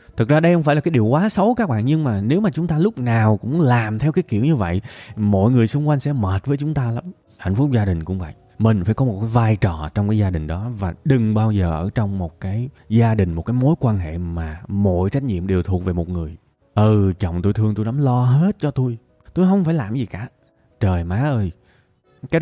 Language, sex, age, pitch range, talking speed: Vietnamese, male, 20-39, 95-130 Hz, 265 wpm